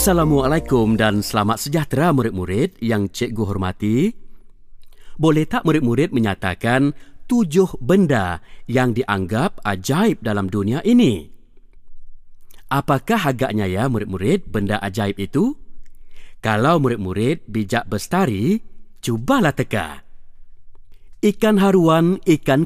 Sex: male